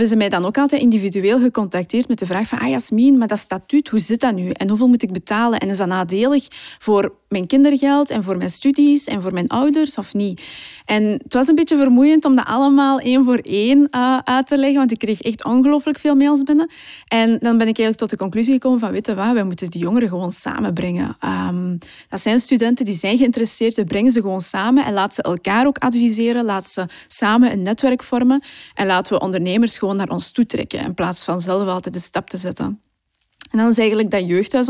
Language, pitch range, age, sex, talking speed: Dutch, 195-255 Hz, 20-39, female, 230 wpm